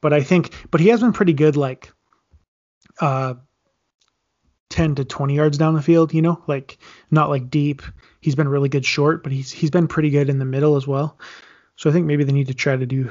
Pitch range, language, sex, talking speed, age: 140-165 Hz, English, male, 230 wpm, 20-39